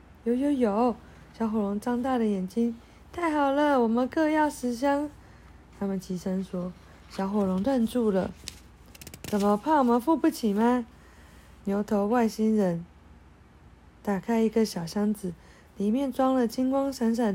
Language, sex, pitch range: Chinese, female, 190-260 Hz